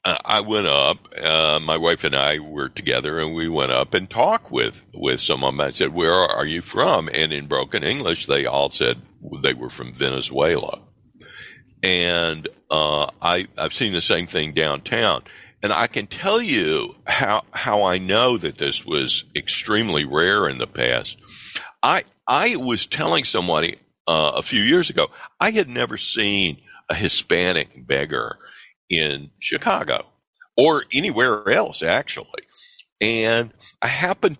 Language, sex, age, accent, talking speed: English, male, 60-79, American, 155 wpm